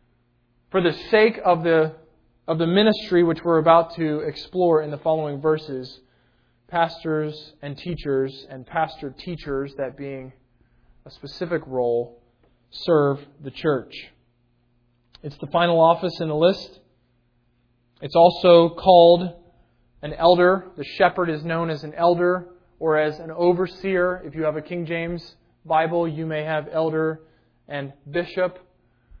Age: 20-39